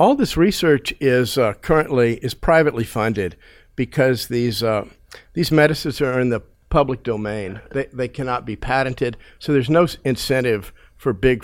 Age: 50-69